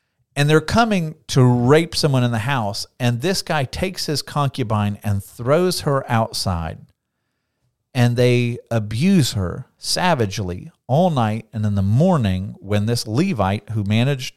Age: 50-69